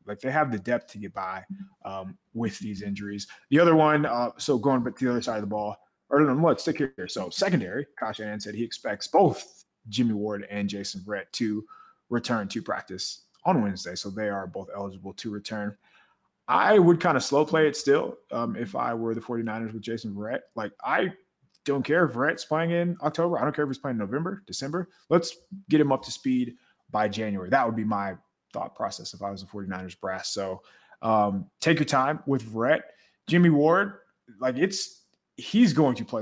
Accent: American